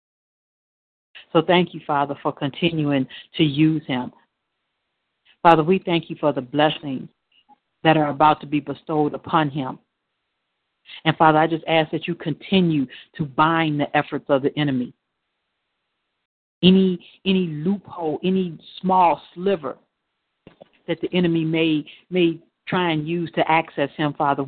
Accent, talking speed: American, 140 wpm